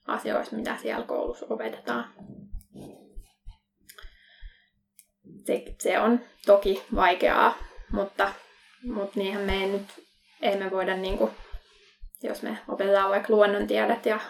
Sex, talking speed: female, 115 wpm